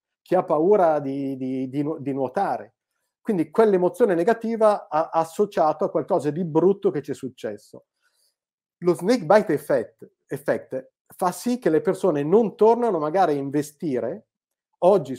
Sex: male